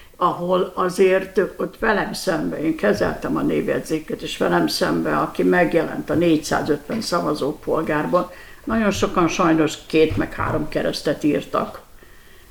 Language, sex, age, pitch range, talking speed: Hungarian, female, 60-79, 160-220 Hz, 120 wpm